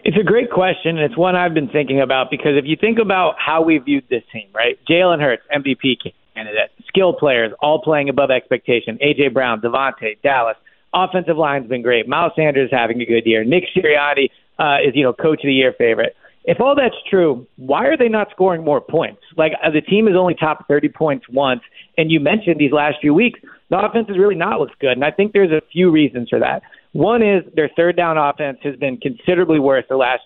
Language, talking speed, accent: English, 225 wpm, American